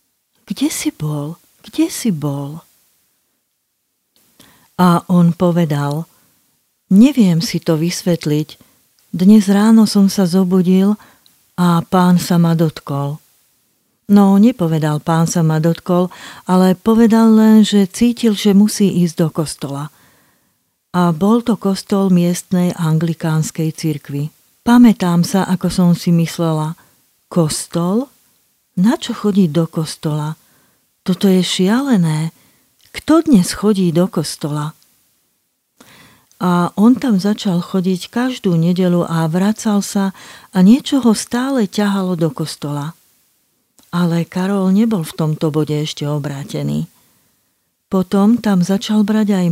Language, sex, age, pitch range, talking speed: Slovak, female, 40-59, 165-205 Hz, 115 wpm